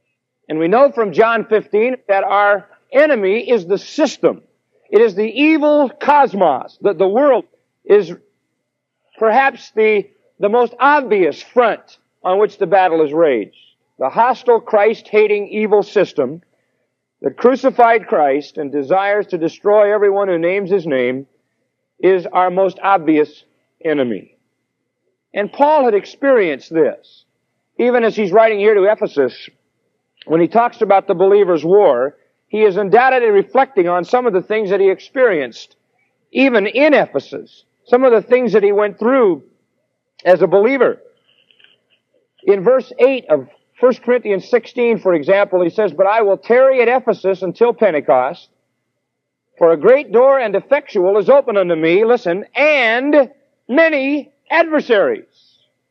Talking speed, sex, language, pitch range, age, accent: 145 wpm, male, English, 195-280 Hz, 50-69, American